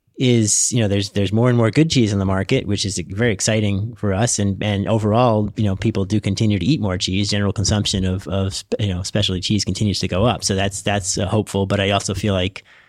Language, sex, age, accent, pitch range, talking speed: English, male, 30-49, American, 95-110 Hz, 240 wpm